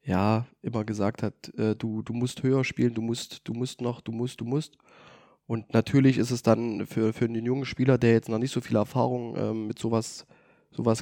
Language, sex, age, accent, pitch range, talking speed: German, male, 20-39, German, 115-135 Hz, 220 wpm